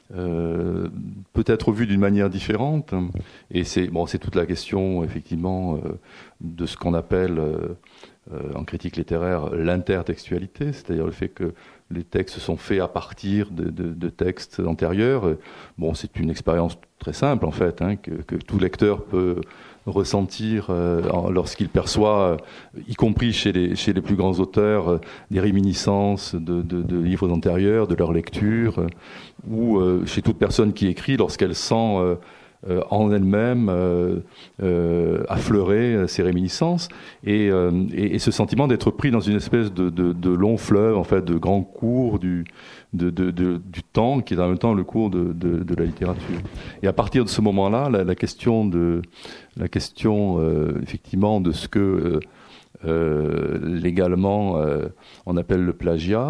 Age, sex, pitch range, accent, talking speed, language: 40-59, male, 85-105 Hz, French, 165 wpm, French